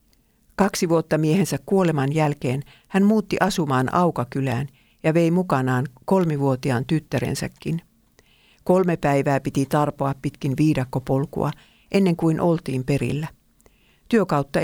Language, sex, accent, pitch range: Finnish, female, native, 135-175 Hz